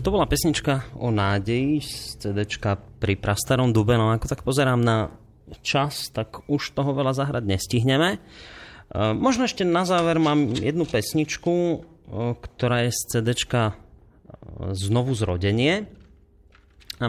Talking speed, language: 125 wpm, Slovak